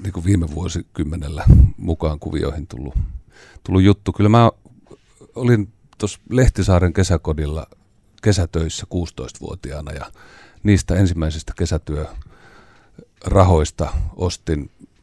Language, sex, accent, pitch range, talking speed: Finnish, male, native, 80-100 Hz, 85 wpm